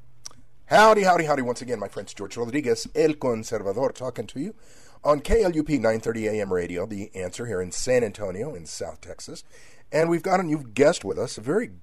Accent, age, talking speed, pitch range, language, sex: American, 50-69, 195 wpm, 100-135 Hz, English, male